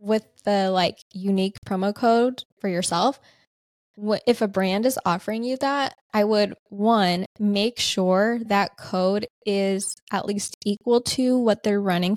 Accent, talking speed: American, 155 wpm